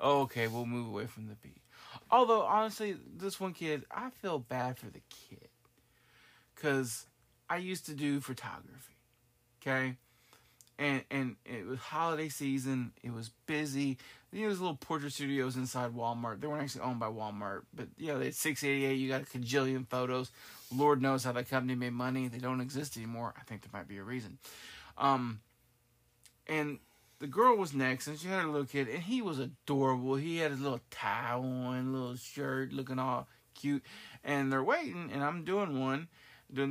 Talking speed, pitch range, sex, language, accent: 180 wpm, 120-150 Hz, male, English, American